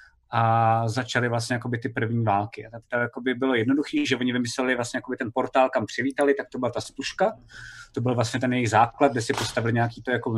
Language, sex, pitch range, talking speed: Czech, male, 120-140 Hz, 210 wpm